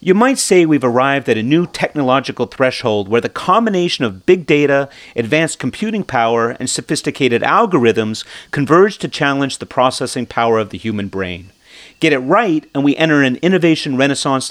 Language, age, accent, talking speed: English, 40-59, American, 170 wpm